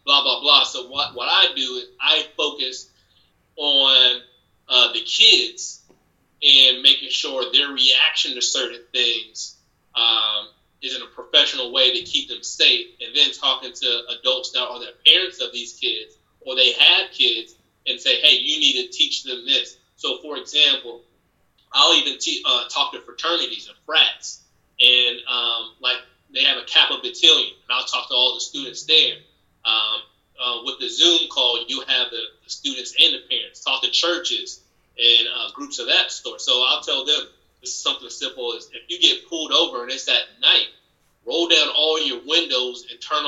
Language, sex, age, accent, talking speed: English, male, 20-39, American, 185 wpm